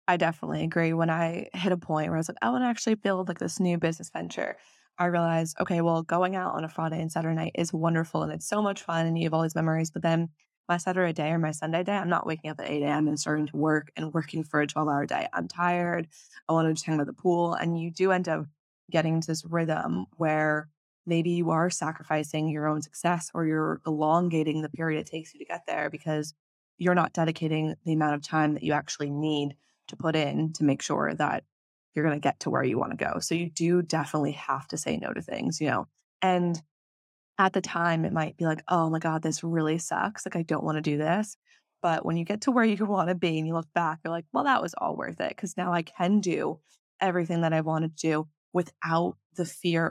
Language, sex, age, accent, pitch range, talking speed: English, female, 20-39, American, 155-175 Hz, 250 wpm